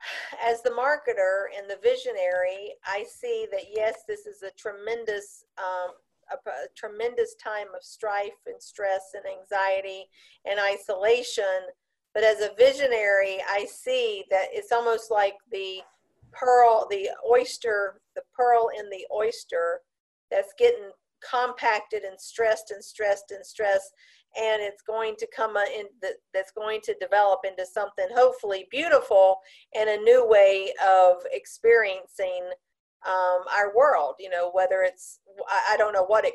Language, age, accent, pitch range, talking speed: English, 50-69, American, 200-290 Hz, 145 wpm